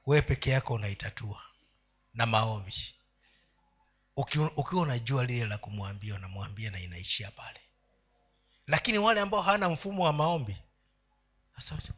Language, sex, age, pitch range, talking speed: Swahili, male, 50-69, 115-150 Hz, 125 wpm